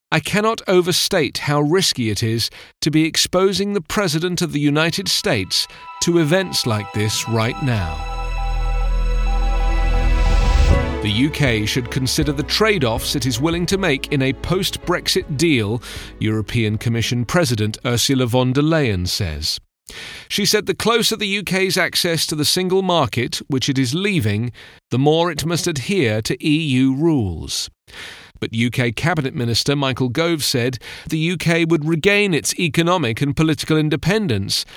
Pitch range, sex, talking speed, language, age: 115-170 Hz, male, 145 wpm, English, 40-59